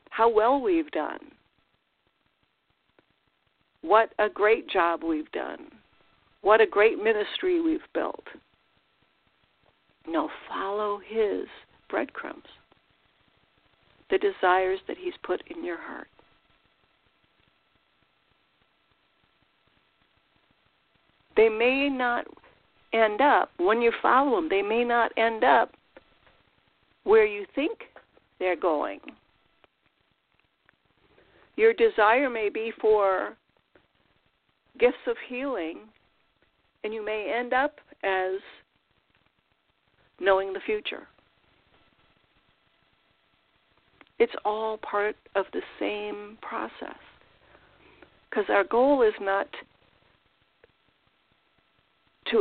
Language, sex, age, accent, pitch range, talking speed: English, female, 60-79, American, 205-345 Hz, 90 wpm